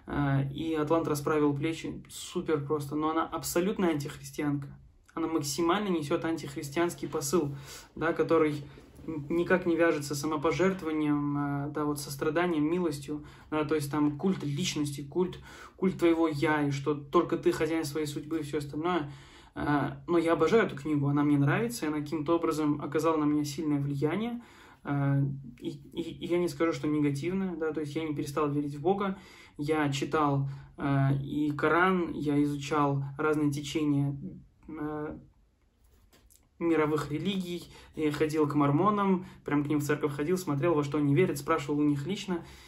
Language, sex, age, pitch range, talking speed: Russian, male, 20-39, 145-165 Hz, 155 wpm